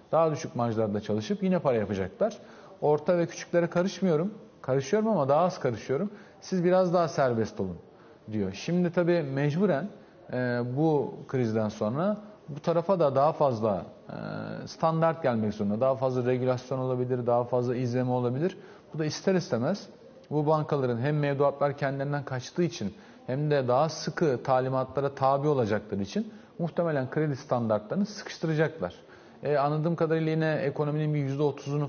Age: 40-59